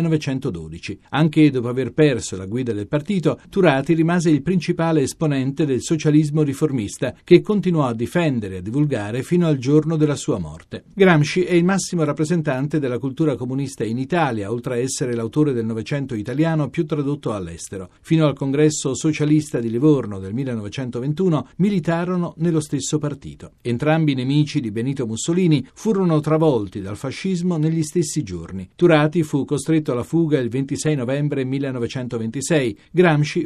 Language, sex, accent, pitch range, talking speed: Italian, male, native, 130-165 Hz, 150 wpm